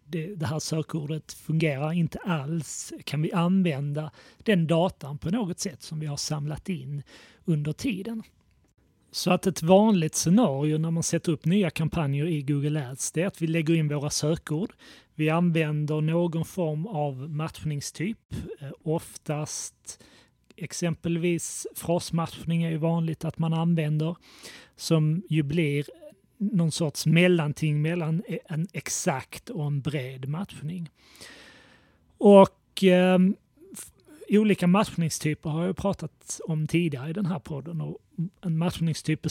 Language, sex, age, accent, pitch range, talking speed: Swedish, male, 30-49, native, 150-175 Hz, 130 wpm